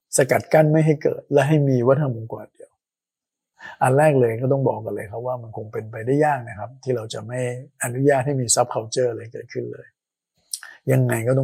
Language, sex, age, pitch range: Thai, male, 60-79, 115-145 Hz